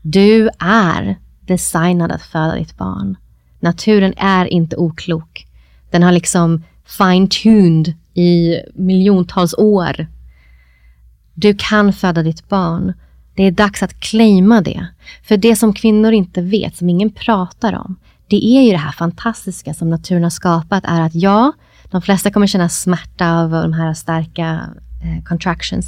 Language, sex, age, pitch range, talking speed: Swedish, female, 30-49, 170-200 Hz, 145 wpm